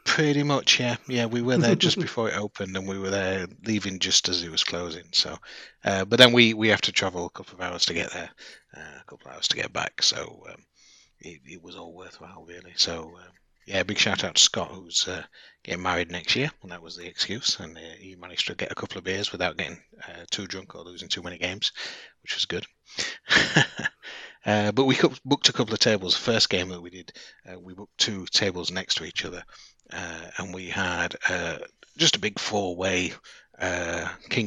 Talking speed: 225 wpm